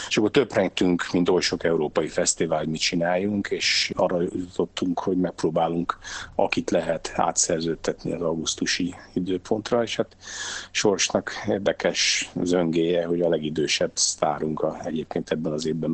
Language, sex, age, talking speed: Hungarian, male, 50-69, 140 wpm